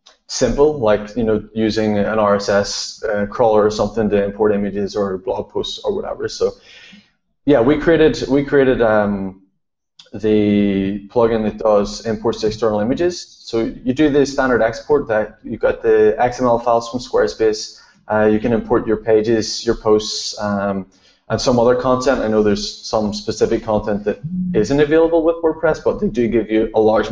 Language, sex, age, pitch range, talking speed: English, male, 20-39, 105-150 Hz, 175 wpm